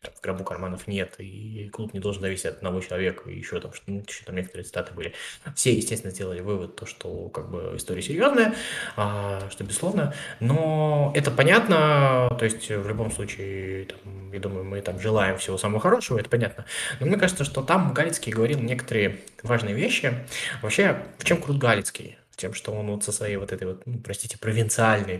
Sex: male